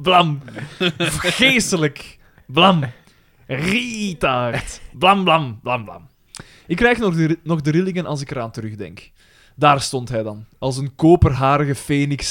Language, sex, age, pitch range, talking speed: Dutch, male, 20-39, 130-175 Hz, 140 wpm